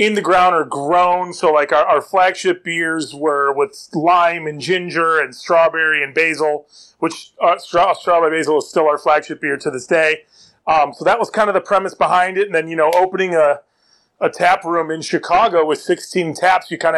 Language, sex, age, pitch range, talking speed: English, male, 30-49, 155-180 Hz, 205 wpm